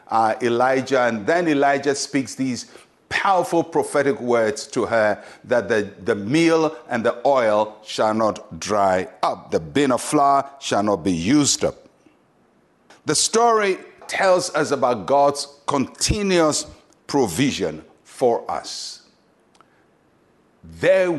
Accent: Nigerian